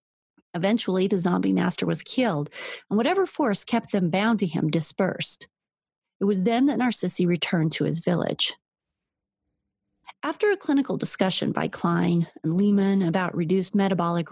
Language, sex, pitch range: English, female, 180-245 Hz